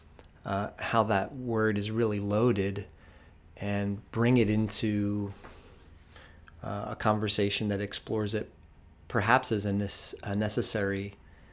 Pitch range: 95-110 Hz